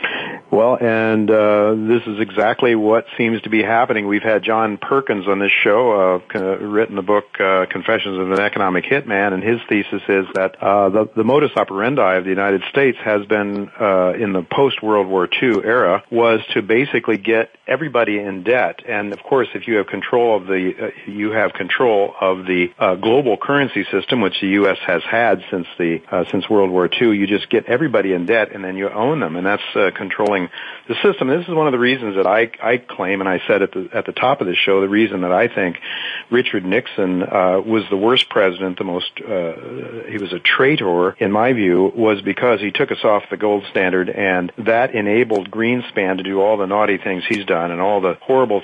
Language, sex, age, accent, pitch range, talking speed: English, male, 50-69, American, 95-115 Hz, 215 wpm